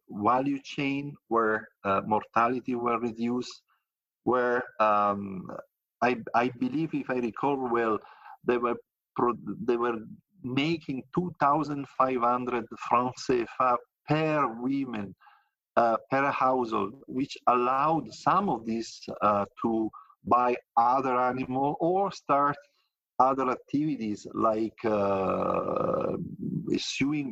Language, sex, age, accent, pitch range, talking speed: English, male, 50-69, Italian, 115-145 Hz, 105 wpm